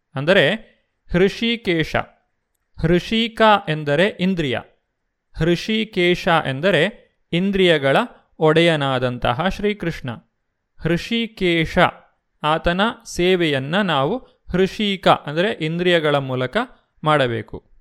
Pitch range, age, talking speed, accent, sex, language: 150-190 Hz, 30-49, 65 wpm, native, male, Kannada